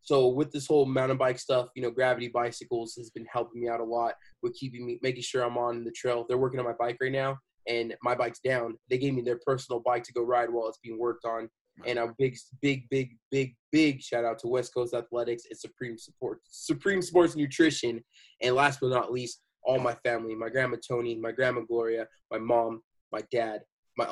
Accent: American